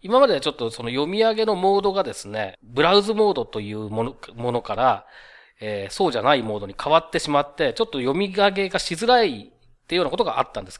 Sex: male